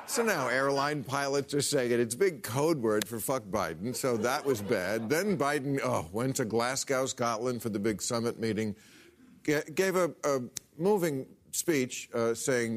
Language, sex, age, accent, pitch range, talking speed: English, male, 50-69, American, 110-145 Hz, 185 wpm